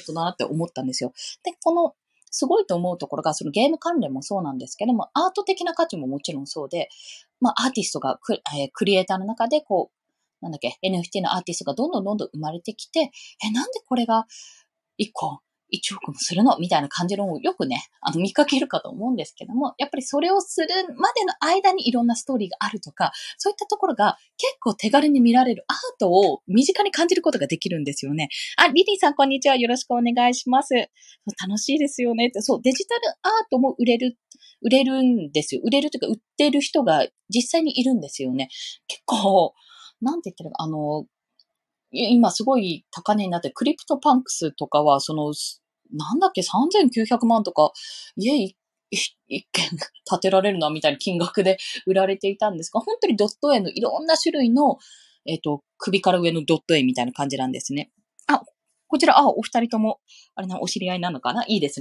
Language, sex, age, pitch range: Japanese, female, 20-39, 180-305 Hz